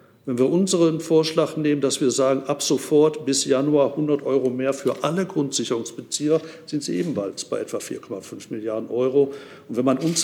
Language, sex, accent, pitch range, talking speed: German, male, German, 135-160 Hz, 175 wpm